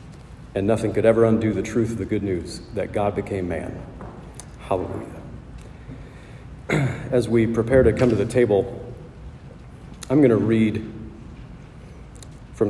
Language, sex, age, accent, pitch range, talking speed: English, male, 40-59, American, 100-125 Hz, 135 wpm